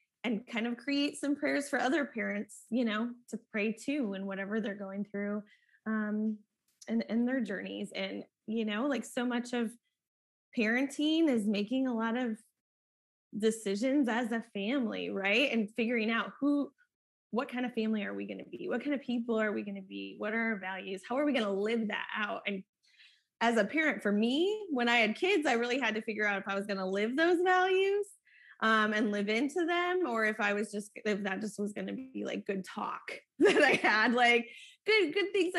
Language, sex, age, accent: English, female, 20-39, American